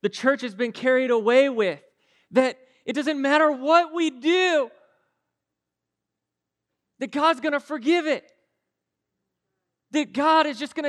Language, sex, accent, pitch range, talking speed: English, male, American, 255-315 Hz, 140 wpm